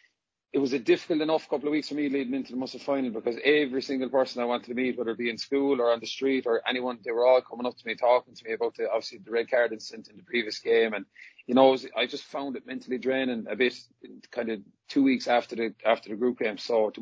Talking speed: 280 wpm